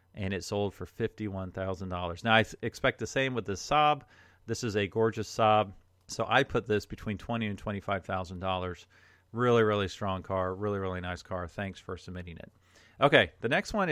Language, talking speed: English, 185 wpm